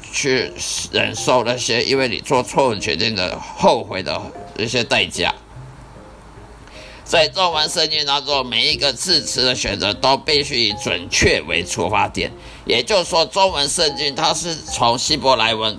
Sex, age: male, 50-69